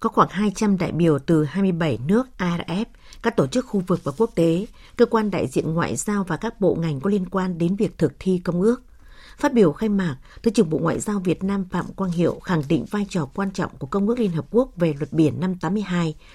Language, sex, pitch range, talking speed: Vietnamese, female, 165-215 Hz, 245 wpm